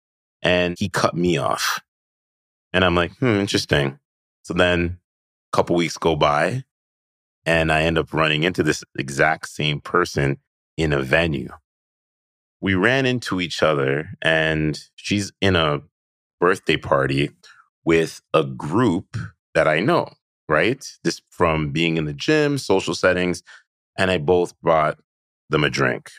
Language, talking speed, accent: English, 145 wpm, American